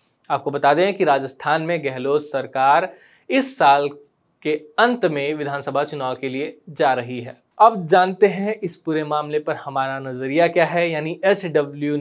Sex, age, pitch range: male, 20-39, 145-185 Hz